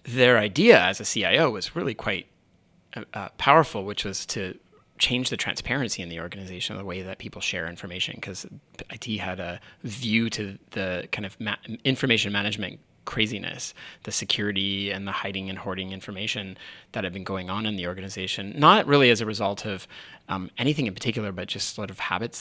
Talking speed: 180 wpm